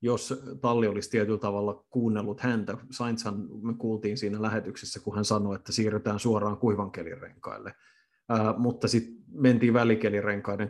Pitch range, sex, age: 105-115 Hz, male, 30-49